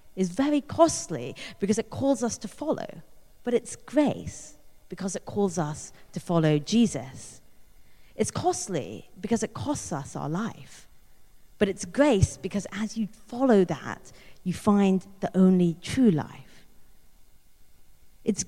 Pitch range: 155-220 Hz